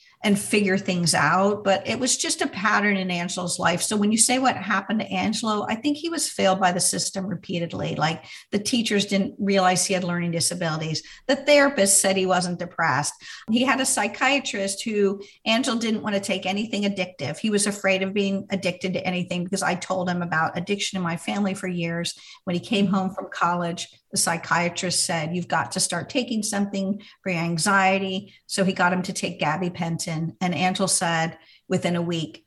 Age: 50-69